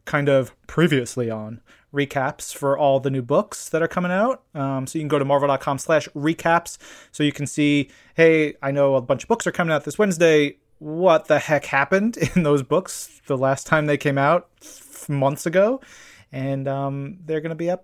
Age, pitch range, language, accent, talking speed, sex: 30-49, 140-175 Hz, English, American, 205 wpm, male